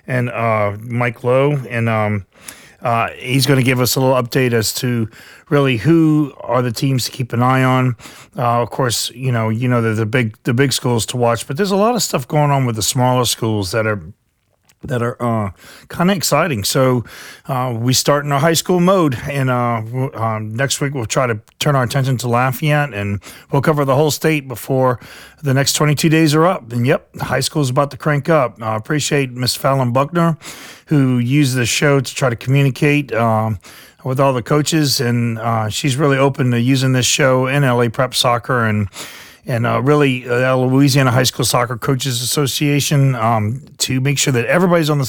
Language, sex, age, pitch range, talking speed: English, male, 40-59, 120-140 Hz, 210 wpm